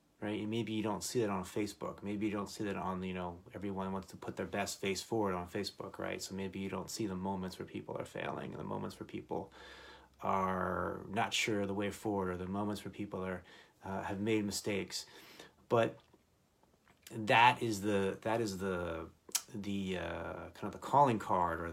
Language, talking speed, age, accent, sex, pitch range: English, 205 wpm, 30-49, American, male, 95-105 Hz